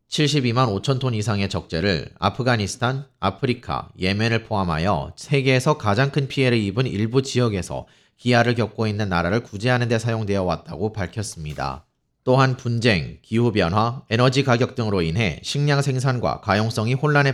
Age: 30-49